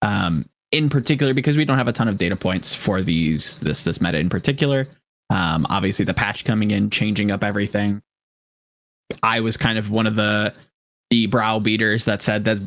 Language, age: English, 20-39